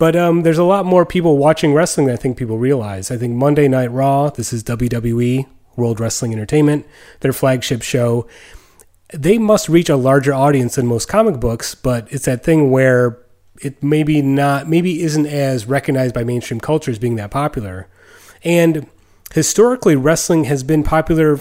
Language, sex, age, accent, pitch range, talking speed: English, male, 30-49, American, 120-150 Hz, 175 wpm